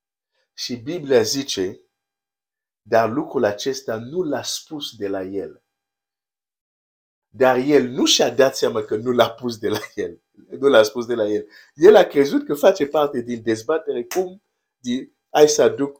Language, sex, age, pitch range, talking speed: Romanian, male, 50-69, 105-145 Hz, 160 wpm